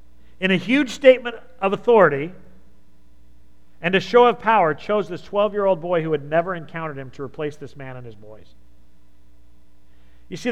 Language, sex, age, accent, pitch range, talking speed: English, male, 50-69, American, 135-185 Hz, 165 wpm